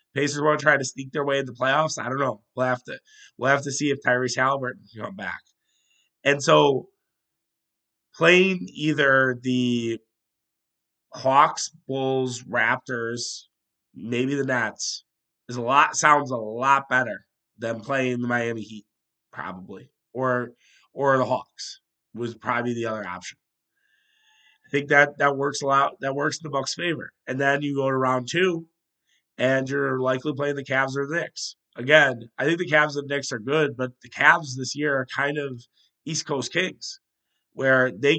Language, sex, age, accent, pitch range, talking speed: English, male, 30-49, American, 125-145 Hz, 175 wpm